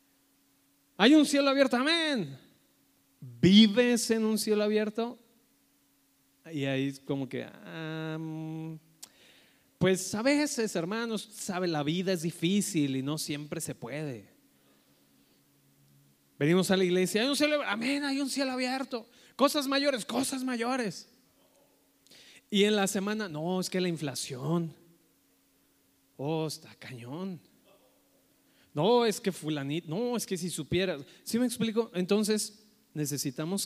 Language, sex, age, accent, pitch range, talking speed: Spanish, male, 30-49, Mexican, 145-225 Hz, 130 wpm